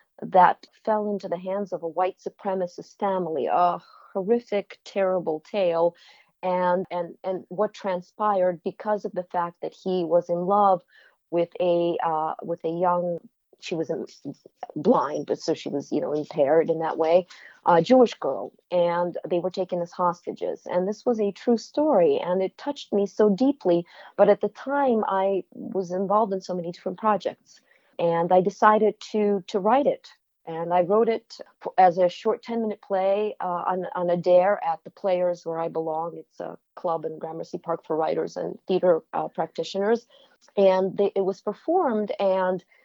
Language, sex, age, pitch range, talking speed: English, female, 40-59, 175-210 Hz, 180 wpm